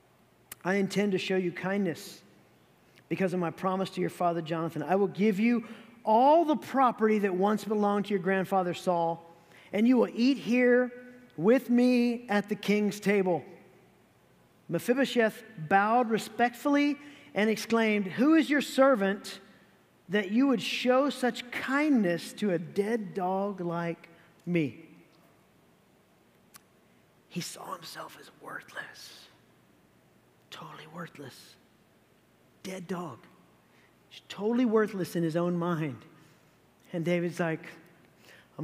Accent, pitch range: American, 160-210 Hz